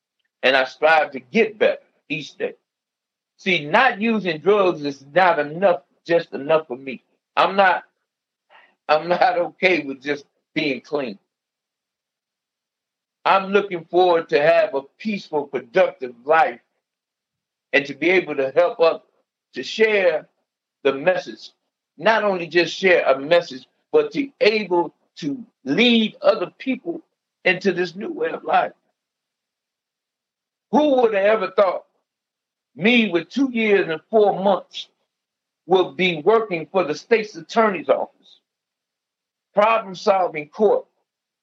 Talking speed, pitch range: 130 wpm, 160-230 Hz